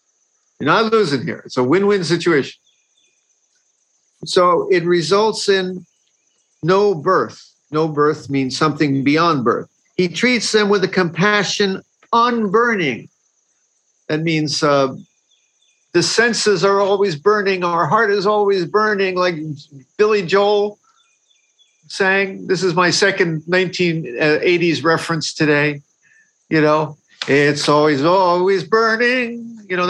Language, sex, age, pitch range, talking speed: English, male, 50-69, 155-205 Hz, 120 wpm